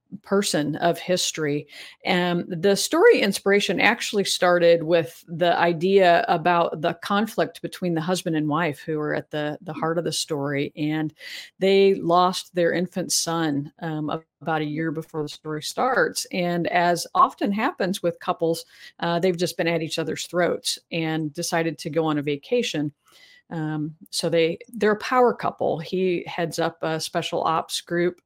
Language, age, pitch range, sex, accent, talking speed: English, 50-69, 160-185 Hz, female, American, 165 wpm